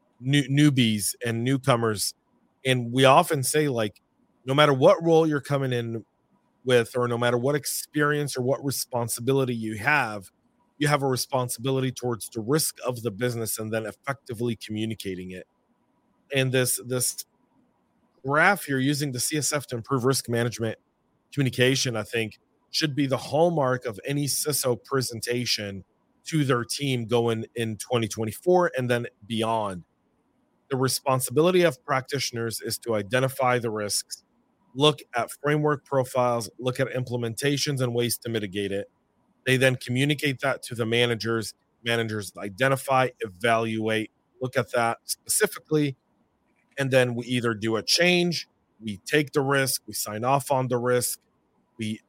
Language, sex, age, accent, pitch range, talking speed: English, male, 30-49, American, 115-140 Hz, 145 wpm